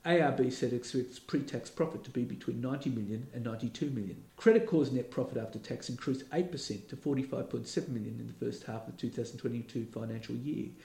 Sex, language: male, English